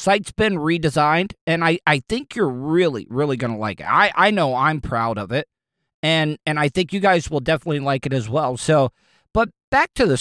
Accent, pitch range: American, 130-180 Hz